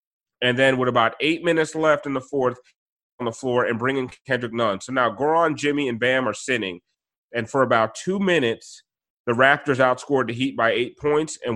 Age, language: 30-49, English